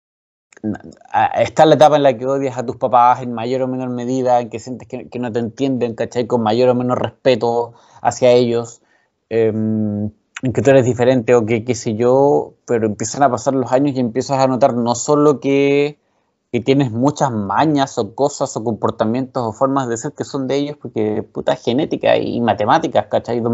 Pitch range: 120-150 Hz